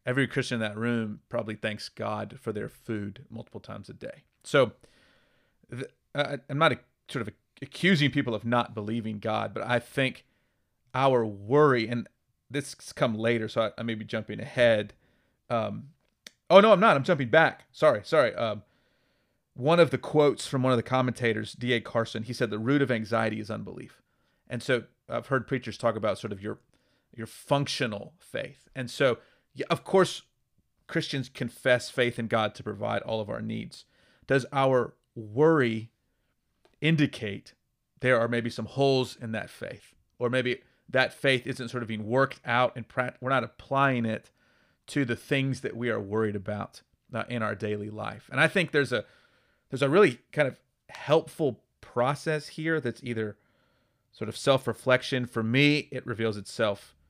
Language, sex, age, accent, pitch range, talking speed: English, male, 30-49, American, 110-135 Hz, 180 wpm